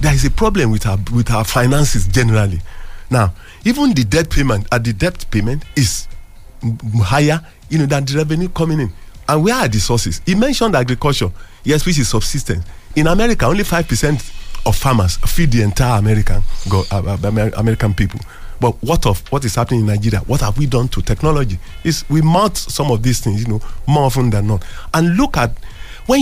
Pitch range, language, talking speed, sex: 105-155 Hz, English, 200 wpm, male